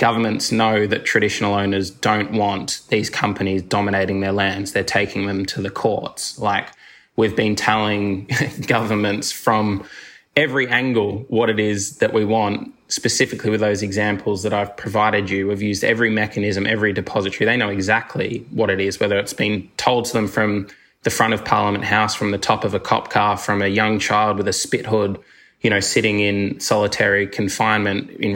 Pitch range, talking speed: 100-110 Hz, 180 wpm